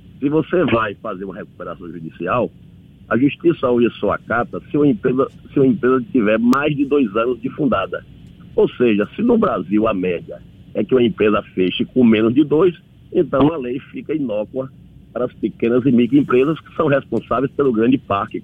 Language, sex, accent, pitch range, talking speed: Portuguese, male, Brazilian, 110-145 Hz, 180 wpm